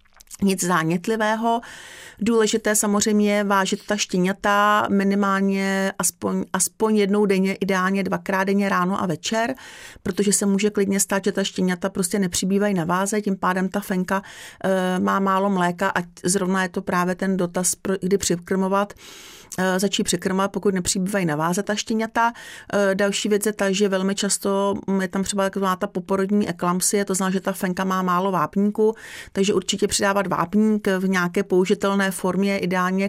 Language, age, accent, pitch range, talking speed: Czech, 40-59, native, 185-205 Hz, 160 wpm